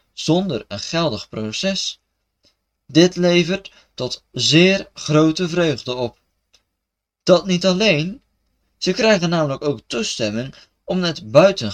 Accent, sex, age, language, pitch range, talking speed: Dutch, male, 20-39, Dutch, 110-185 Hz, 110 wpm